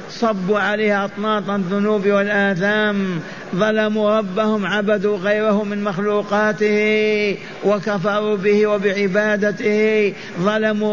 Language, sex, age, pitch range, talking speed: Arabic, male, 50-69, 185-210 Hz, 80 wpm